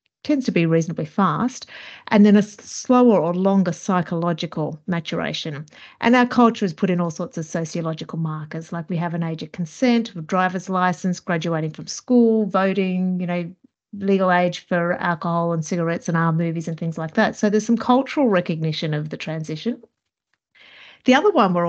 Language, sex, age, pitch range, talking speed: English, female, 40-59, 165-210 Hz, 180 wpm